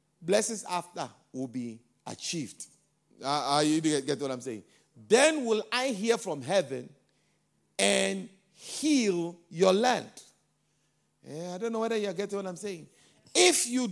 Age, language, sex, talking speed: 50-69, English, male, 150 wpm